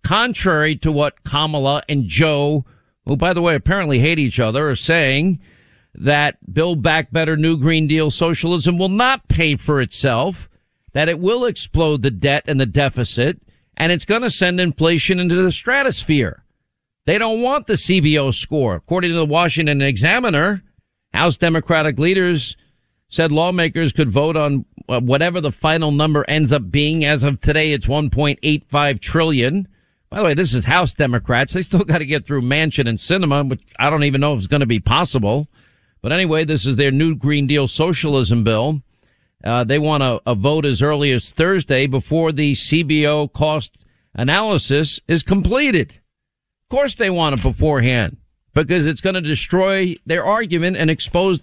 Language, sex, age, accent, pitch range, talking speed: English, male, 50-69, American, 140-170 Hz, 175 wpm